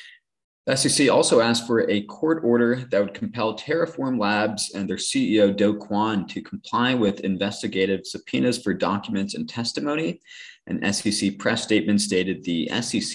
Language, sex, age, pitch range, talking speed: English, male, 20-39, 85-110 Hz, 150 wpm